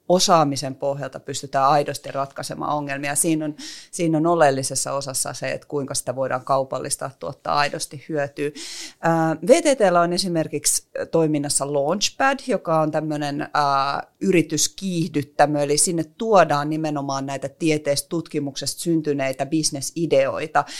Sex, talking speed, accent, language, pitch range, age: female, 115 wpm, native, Finnish, 140-170 Hz, 30-49